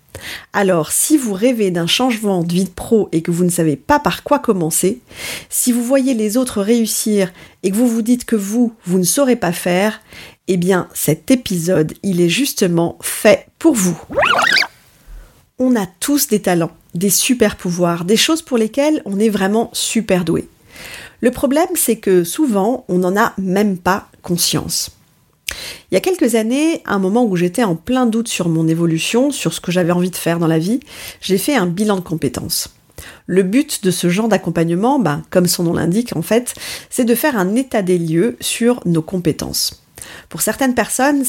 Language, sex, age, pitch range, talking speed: French, female, 40-59, 175-240 Hz, 190 wpm